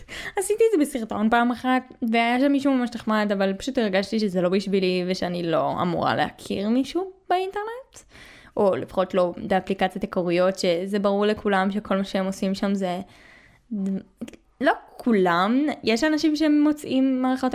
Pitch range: 195-255 Hz